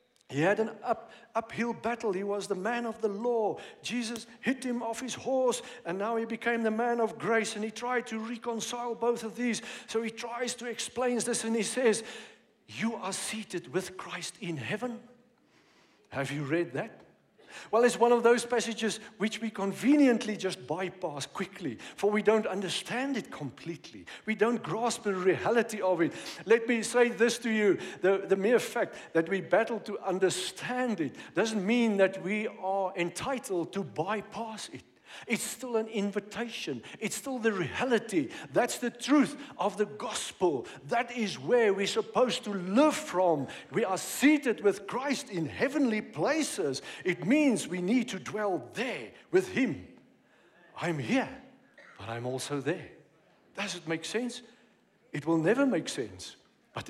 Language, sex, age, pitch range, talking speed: English, male, 50-69, 190-240 Hz, 170 wpm